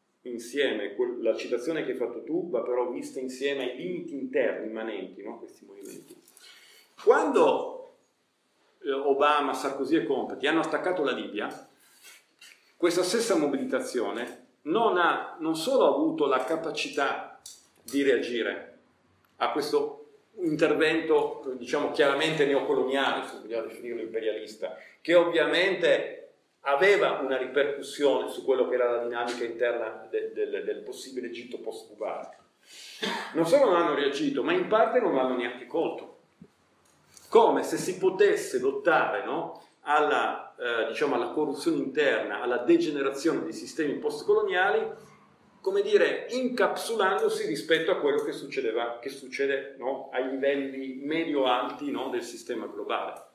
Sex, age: male, 40-59